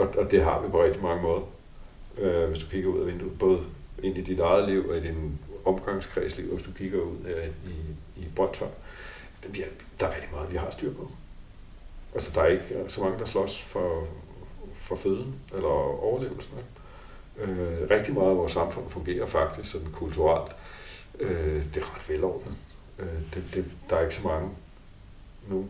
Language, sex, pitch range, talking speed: Danish, male, 85-100 Hz, 185 wpm